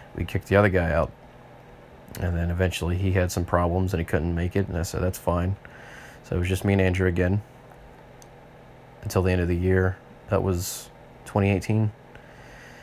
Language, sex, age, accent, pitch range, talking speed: English, male, 30-49, American, 90-110 Hz, 185 wpm